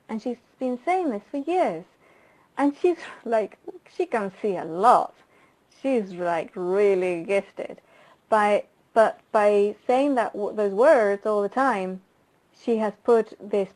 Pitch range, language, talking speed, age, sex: 200-255 Hz, English, 145 wpm, 30-49, female